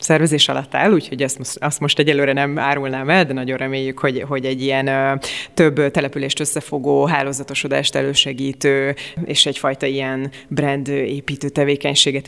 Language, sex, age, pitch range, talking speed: Hungarian, female, 30-49, 135-150 Hz, 140 wpm